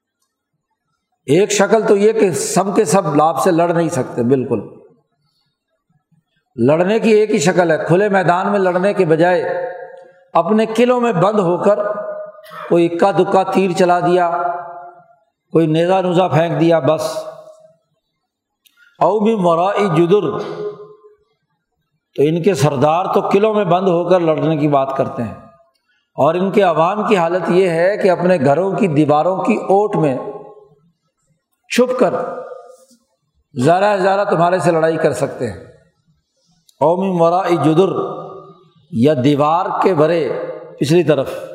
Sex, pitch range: male, 160-210 Hz